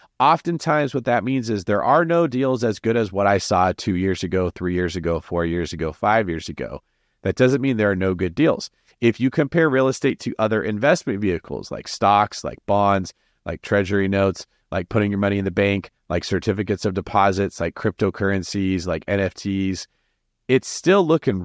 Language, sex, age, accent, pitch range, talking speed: English, male, 30-49, American, 95-130 Hz, 195 wpm